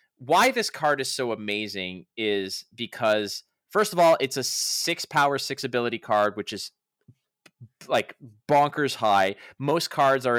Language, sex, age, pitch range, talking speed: English, male, 20-39, 115-160 Hz, 155 wpm